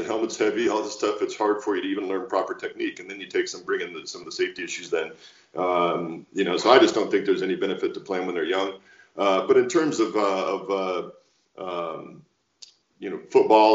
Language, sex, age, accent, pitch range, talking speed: English, male, 40-59, American, 370-410 Hz, 245 wpm